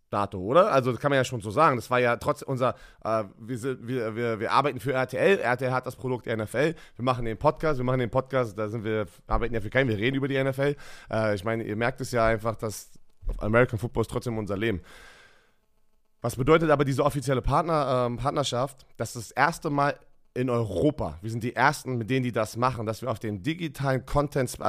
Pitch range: 120-140 Hz